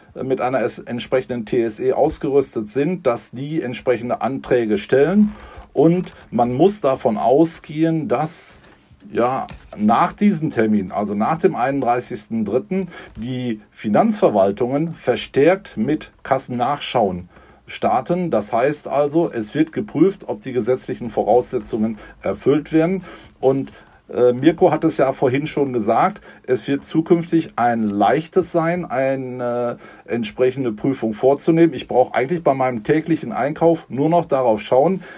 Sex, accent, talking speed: male, German, 125 wpm